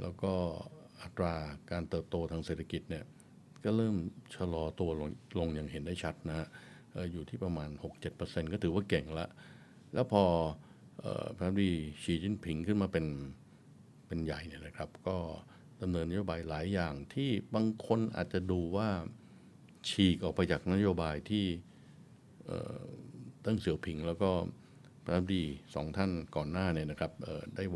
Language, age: Thai, 60-79